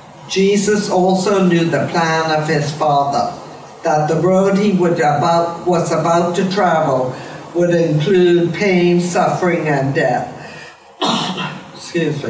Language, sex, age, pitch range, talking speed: English, female, 60-79, 155-185 Hz, 120 wpm